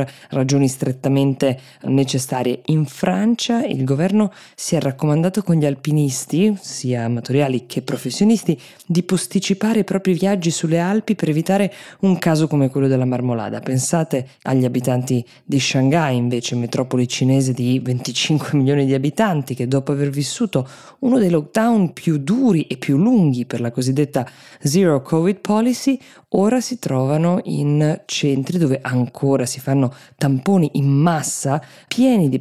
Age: 20-39